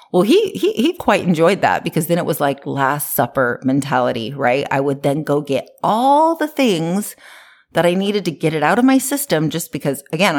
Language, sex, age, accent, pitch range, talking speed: English, female, 30-49, American, 145-195 Hz, 215 wpm